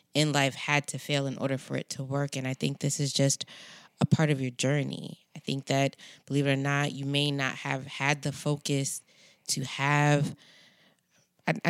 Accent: American